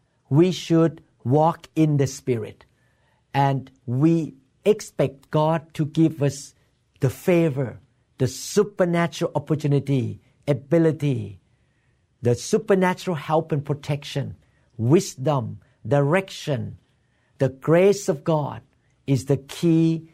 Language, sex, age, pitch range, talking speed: English, male, 50-69, 130-165 Hz, 100 wpm